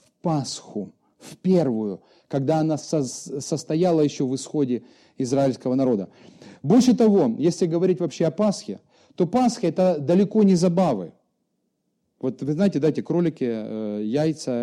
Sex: male